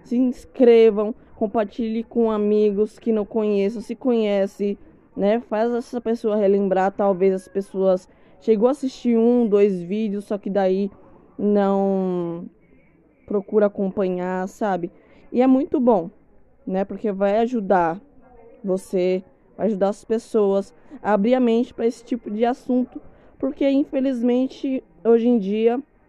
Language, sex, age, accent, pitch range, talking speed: Portuguese, female, 20-39, Brazilian, 190-230 Hz, 135 wpm